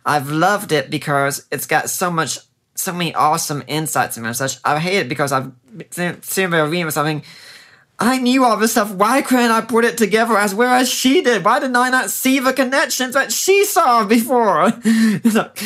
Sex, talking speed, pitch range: male, 200 wpm, 140-210 Hz